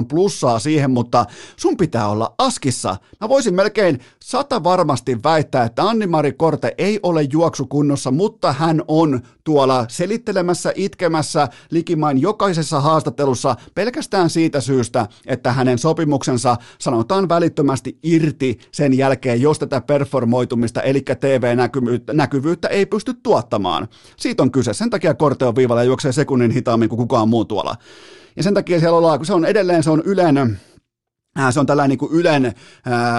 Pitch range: 130-170 Hz